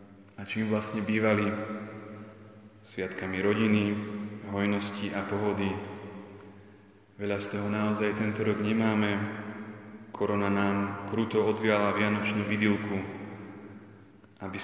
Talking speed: 95 wpm